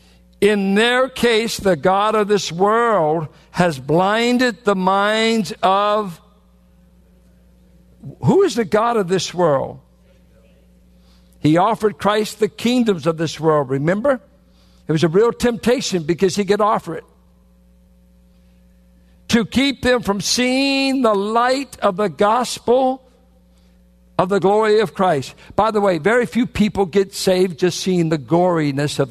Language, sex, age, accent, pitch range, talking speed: English, male, 60-79, American, 135-215 Hz, 140 wpm